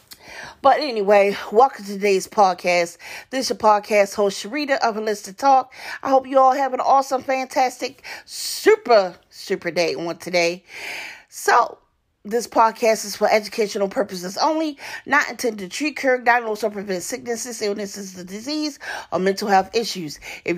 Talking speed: 155 wpm